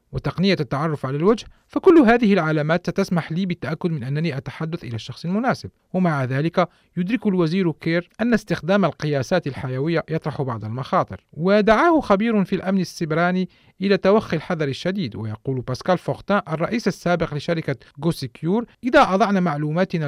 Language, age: Arabic, 40-59